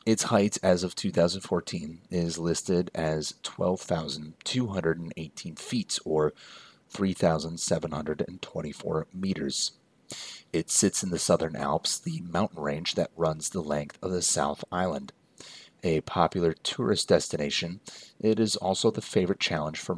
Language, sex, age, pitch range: English, male, 30-49, 80-100 Hz